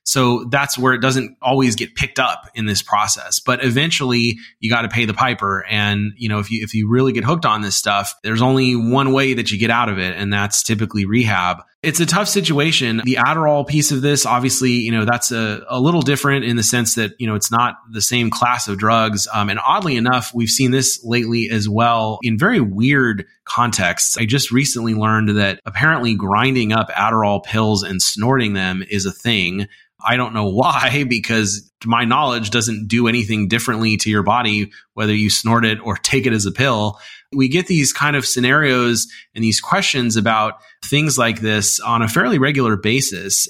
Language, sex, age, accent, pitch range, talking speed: English, male, 30-49, American, 105-130 Hz, 205 wpm